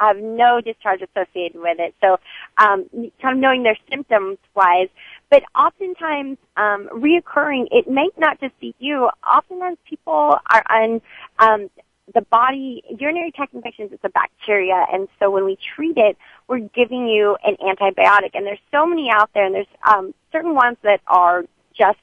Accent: American